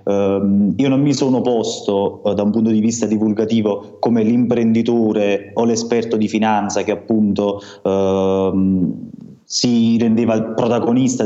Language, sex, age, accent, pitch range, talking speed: Italian, male, 20-39, native, 110-120 Hz, 130 wpm